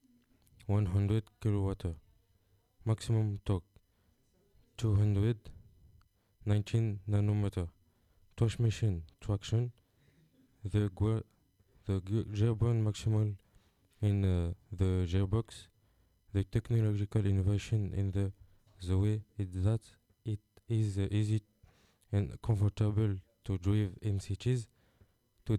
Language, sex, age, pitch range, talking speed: French, male, 20-39, 95-110 Hz, 90 wpm